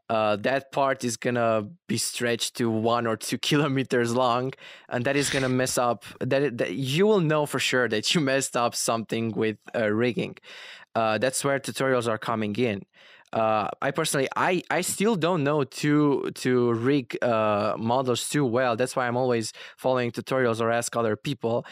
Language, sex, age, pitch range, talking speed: English, male, 20-39, 115-135 Hz, 190 wpm